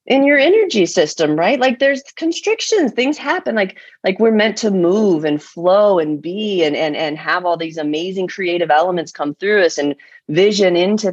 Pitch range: 165-225 Hz